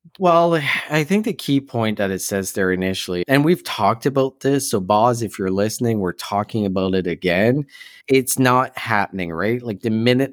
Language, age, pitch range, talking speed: English, 30-49, 100-130 Hz, 190 wpm